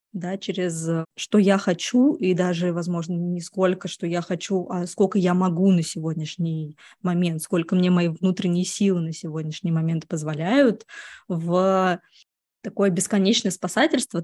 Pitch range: 180-205 Hz